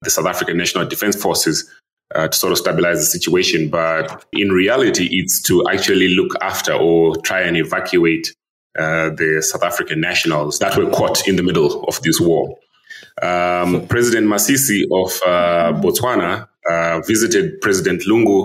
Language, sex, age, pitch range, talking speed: English, male, 30-49, 80-100 Hz, 160 wpm